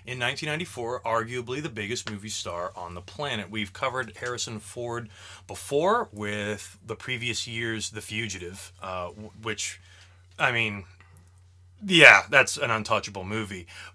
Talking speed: 130 wpm